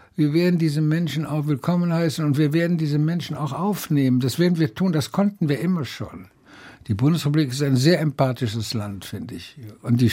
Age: 60-79